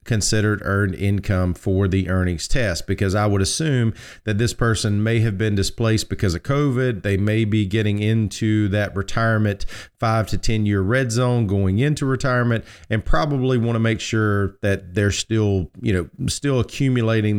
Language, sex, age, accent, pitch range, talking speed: English, male, 40-59, American, 100-120 Hz, 175 wpm